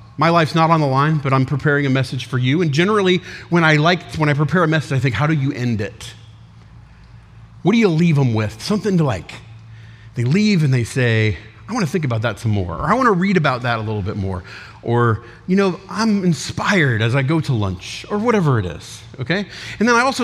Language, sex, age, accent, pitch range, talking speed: English, male, 40-59, American, 115-180 Hz, 245 wpm